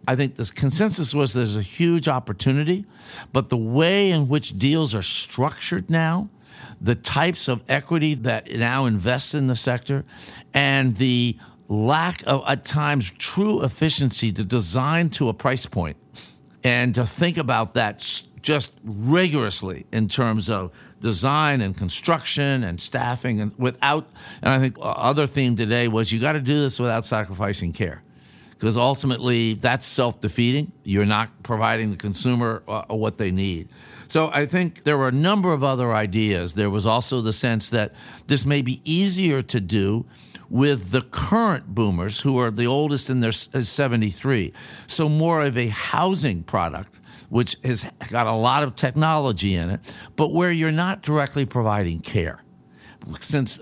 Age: 60-79